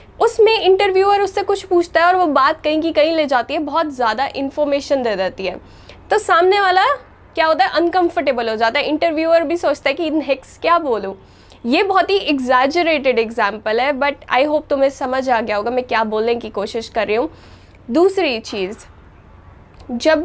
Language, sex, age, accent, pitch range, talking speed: Hindi, female, 10-29, native, 250-340 Hz, 190 wpm